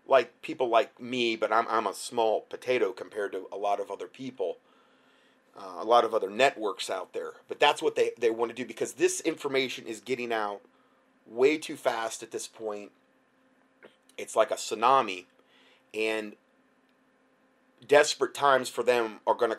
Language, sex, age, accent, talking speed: English, male, 30-49, American, 175 wpm